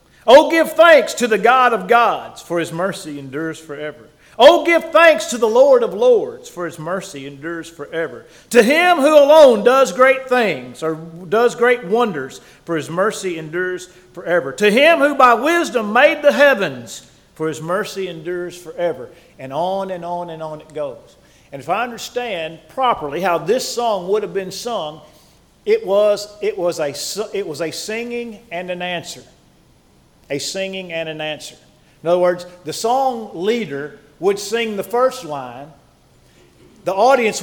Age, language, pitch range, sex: 40-59, English, 165-240 Hz, male